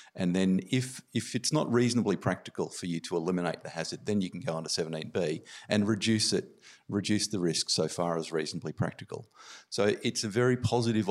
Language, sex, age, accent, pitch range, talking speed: English, male, 50-69, Australian, 85-115 Hz, 200 wpm